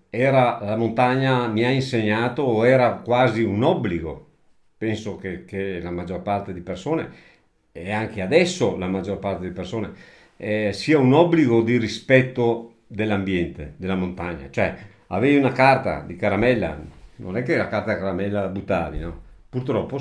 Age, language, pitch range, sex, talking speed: 50-69, Italian, 95-120 Hz, male, 155 wpm